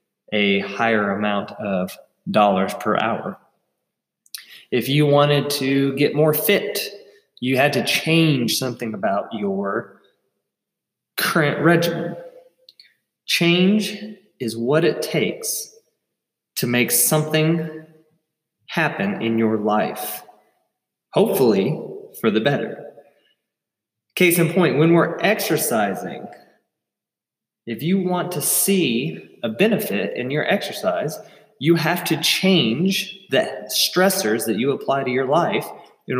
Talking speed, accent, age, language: 115 wpm, American, 20-39, English